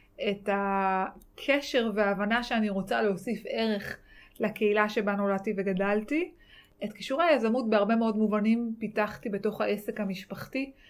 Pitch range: 200-240 Hz